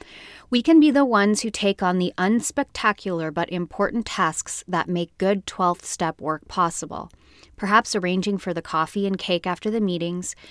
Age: 30-49